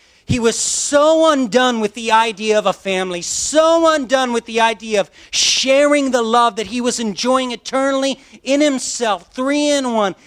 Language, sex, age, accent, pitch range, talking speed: English, male, 40-59, American, 190-265 Hz, 170 wpm